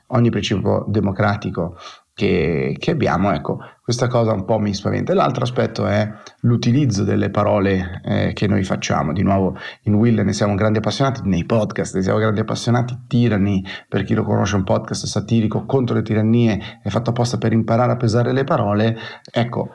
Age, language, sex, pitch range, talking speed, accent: 30-49, Italian, male, 95-120 Hz, 175 wpm, native